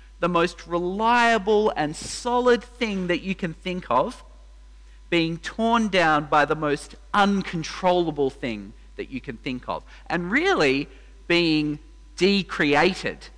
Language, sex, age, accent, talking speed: English, male, 40-59, Australian, 125 wpm